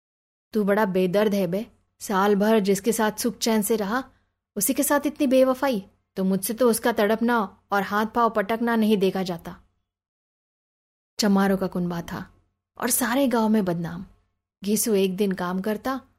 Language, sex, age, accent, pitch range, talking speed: Hindi, female, 20-39, native, 185-230 Hz, 155 wpm